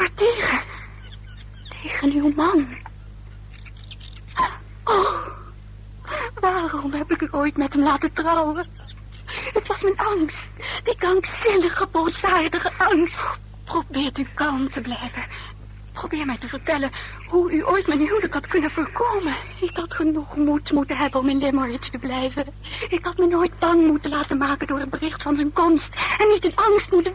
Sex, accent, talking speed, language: female, Dutch, 155 wpm, Dutch